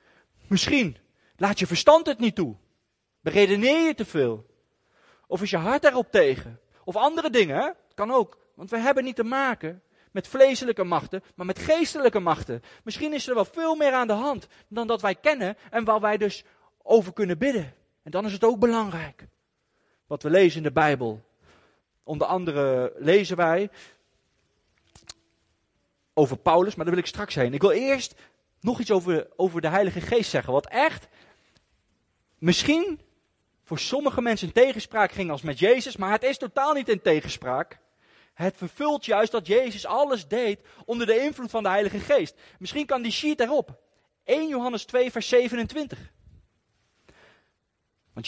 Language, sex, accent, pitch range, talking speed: Dutch, male, Dutch, 150-245 Hz, 170 wpm